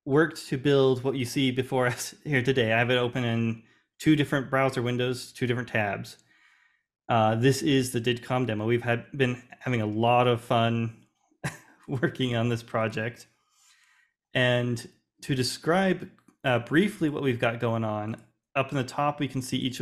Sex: male